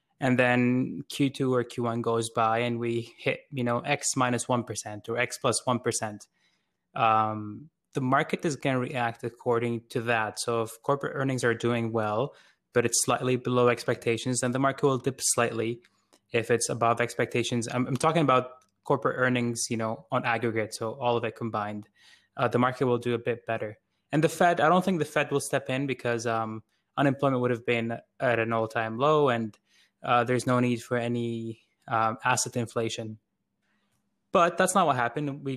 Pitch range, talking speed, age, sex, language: 115-135 Hz, 185 wpm, 20-39, male, English